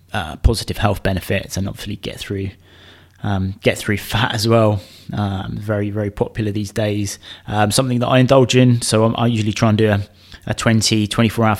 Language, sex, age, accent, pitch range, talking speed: English, male, 20-39, British, 100-125 Hz, 190 wpm